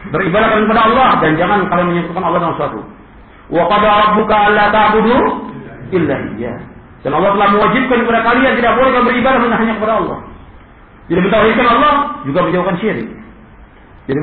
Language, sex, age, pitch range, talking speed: Indonesian, male, 50-69, 195-285 Hz, 155 wpm